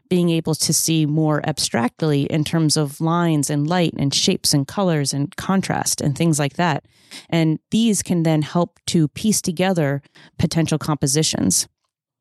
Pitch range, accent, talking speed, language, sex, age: 150-185 Hz, American, 155 wpm, English, female, 30-49